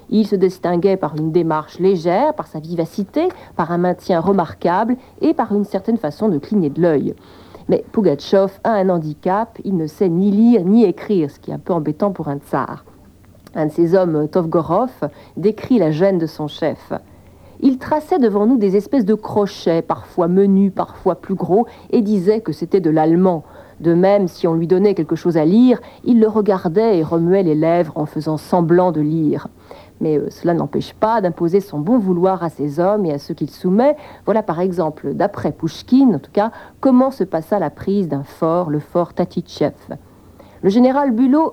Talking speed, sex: 195 wpm, female